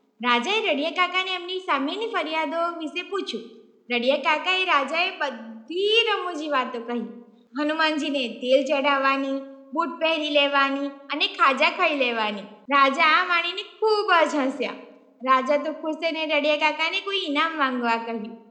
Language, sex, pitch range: Gujarati, female, 275-365 Hz